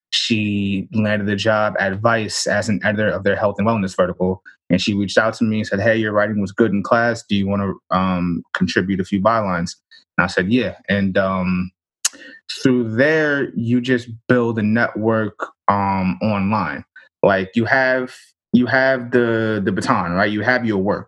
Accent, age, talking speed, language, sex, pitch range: American, 20-39, 190 wpm, English, male, 100-120 Hz